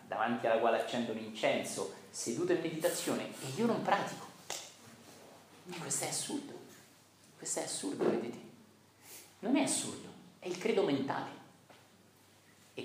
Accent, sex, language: native, male, Italian